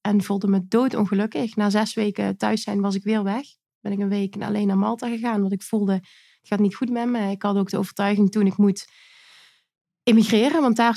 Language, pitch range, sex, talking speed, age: Dutch, 200-235 Hz, female, 225 wpm, 30-49